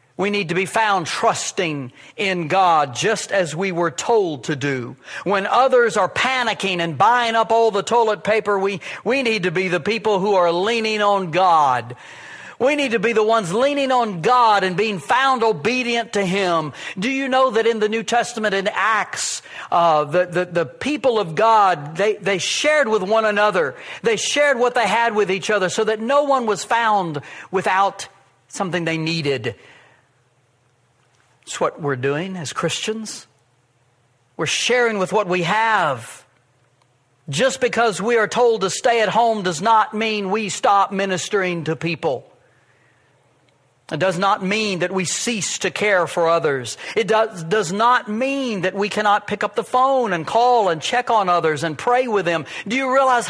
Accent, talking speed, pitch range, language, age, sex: American, 180 wpm, 175-225 Hz, English, 60-79, male